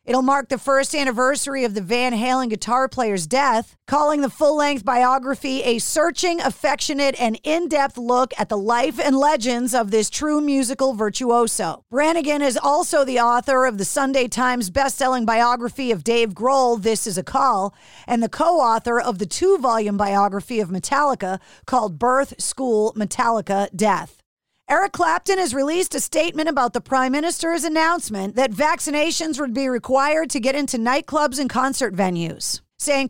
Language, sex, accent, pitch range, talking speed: English, female, American, 230-285 Hz, 160 wpm